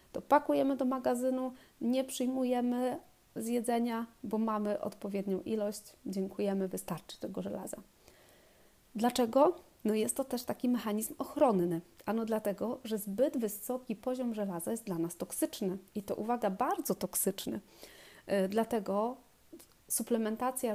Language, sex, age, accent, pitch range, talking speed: Polish, female, 30-49, native, 200-240 Hz, 120 wpm